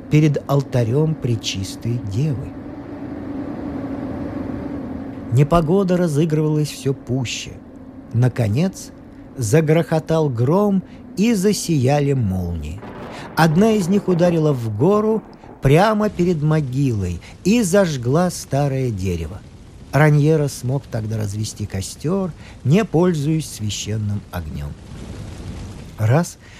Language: Russian